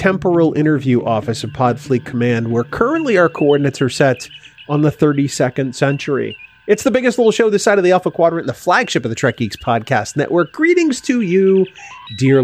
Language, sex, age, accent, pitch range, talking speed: English, male, 30-49, American, 120-155 Hz, 190 wpm